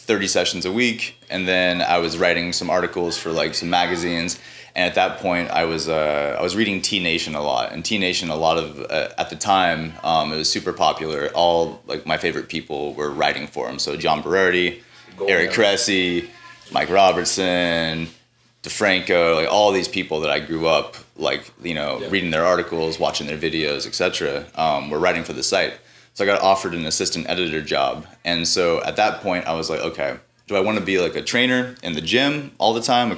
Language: English